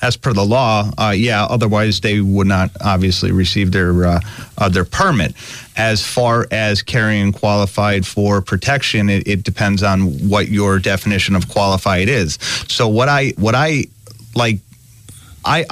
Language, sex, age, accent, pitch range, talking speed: English, male, 30-49, American, 105-120 Hz, 155 wpm